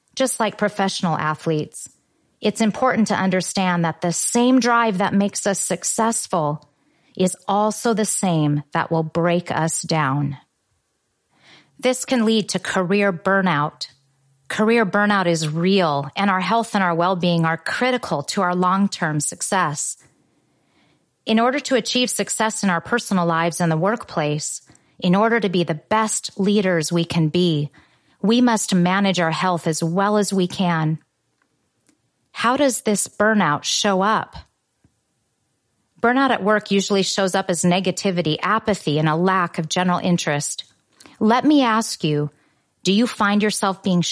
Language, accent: English, American